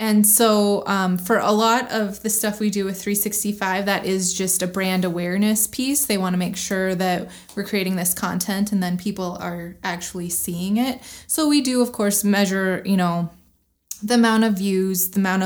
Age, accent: 20-39, American